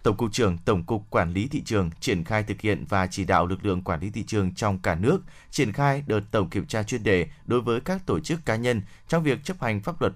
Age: 20-39